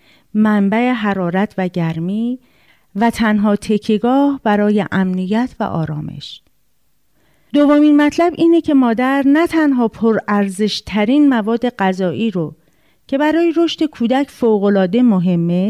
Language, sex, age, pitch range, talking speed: Persian, female, 40-59, 195-255 Hz, 105 wpm